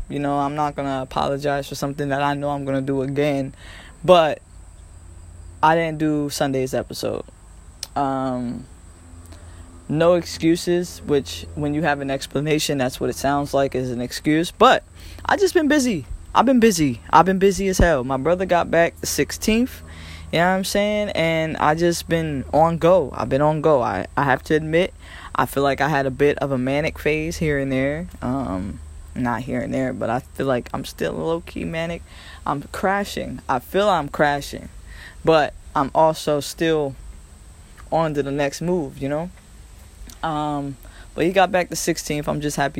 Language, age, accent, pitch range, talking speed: English, 20-39, American, 125-160 Hz, 185 wpm